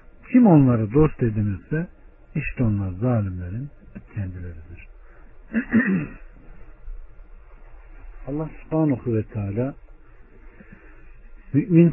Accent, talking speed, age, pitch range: native, 65 wpm, 60-79, 95-135 Hz